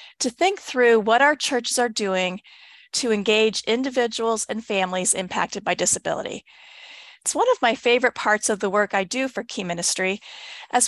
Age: 40-59